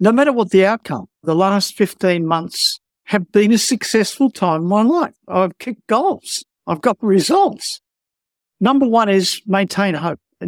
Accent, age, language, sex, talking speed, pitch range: Australian, 60-79, English, male, 165 wpm, 170-210 Hz